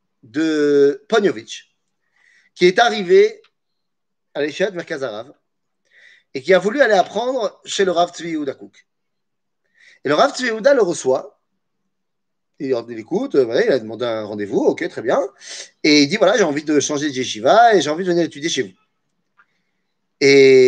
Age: 30-49